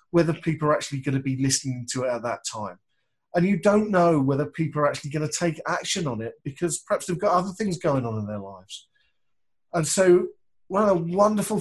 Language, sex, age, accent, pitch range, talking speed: English, male, 40-59, British, 130-170 Hz, 225 wpm